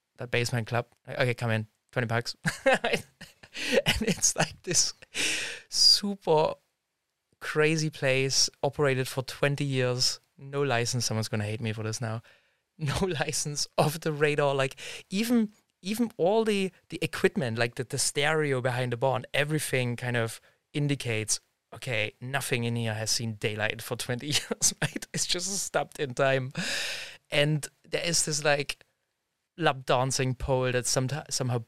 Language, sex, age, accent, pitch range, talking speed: English, male, 20-39, German, 120-150 Hz, 150 wpm